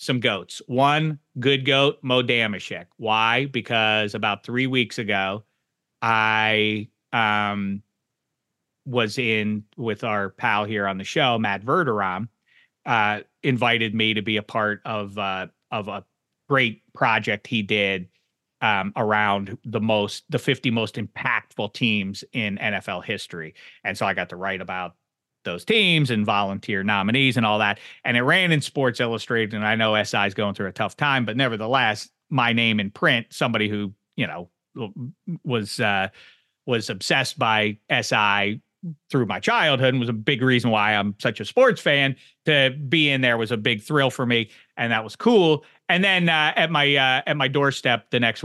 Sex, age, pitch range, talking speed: male, 30-49, 105-135 Hz, 170 wpm